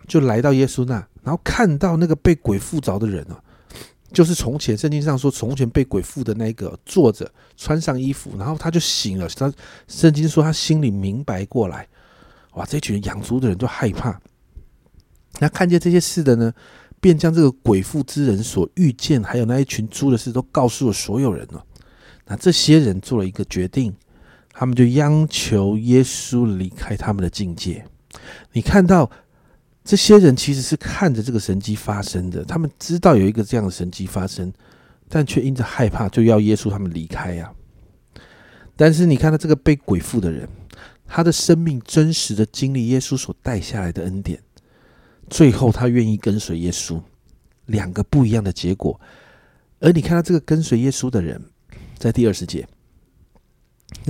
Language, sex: Chinese, male